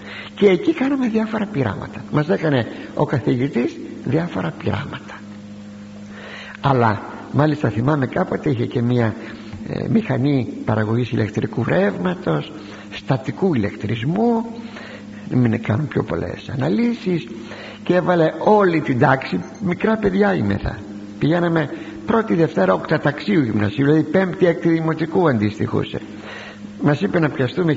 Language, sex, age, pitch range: Greek, male, 60-79, 105-180 Hz